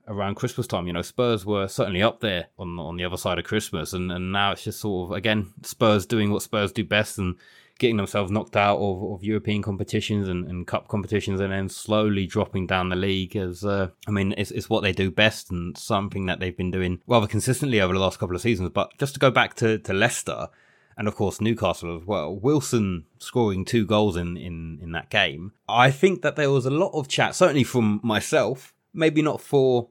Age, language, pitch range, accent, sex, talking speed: 20-39, English, 95-120 Hz, British, male, 225 wpm